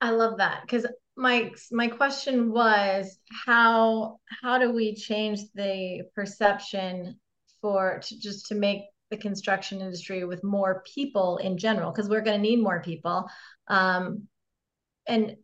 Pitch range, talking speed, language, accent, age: 200-245 Hz, 145 wpm, English, American, 30-49